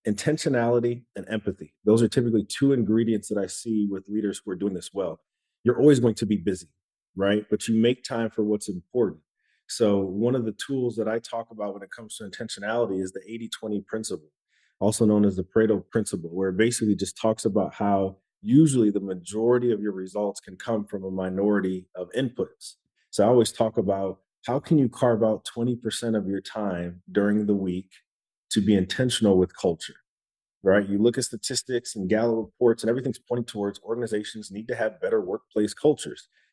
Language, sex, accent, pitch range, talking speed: English, male, American, 100-120 Hz, 190 wpm